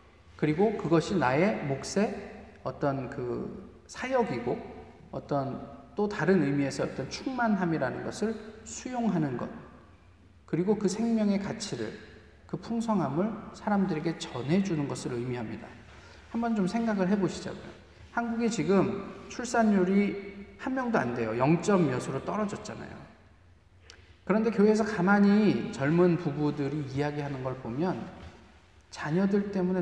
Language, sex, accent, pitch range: Korean, male, native, 125-200 Hz